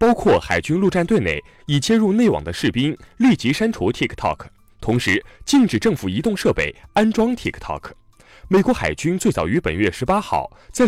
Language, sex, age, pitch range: Chinese, male, 20-39, 150-235 Hz